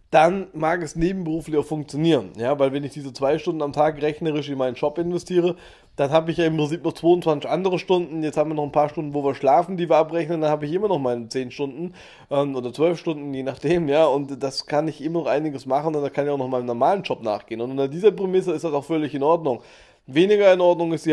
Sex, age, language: male, 20-39, German